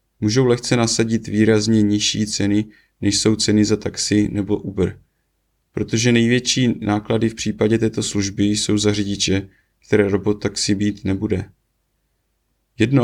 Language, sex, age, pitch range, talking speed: Czech, male, 20-39, 100-110 Hz, 135 wpm